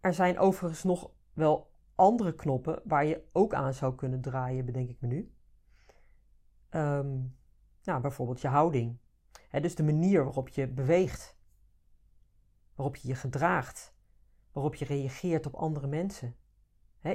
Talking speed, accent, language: 145 wpm, Dutch, Dutch